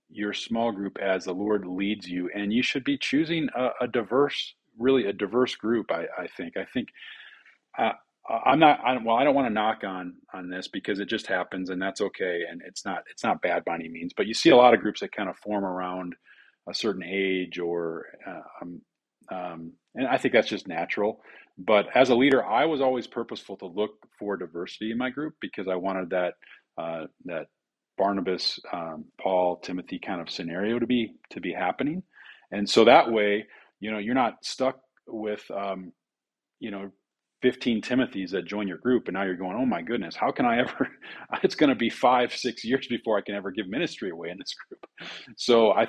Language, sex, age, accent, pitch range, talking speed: English, male, 40-59, American, 95-115 Hz, 210 wpm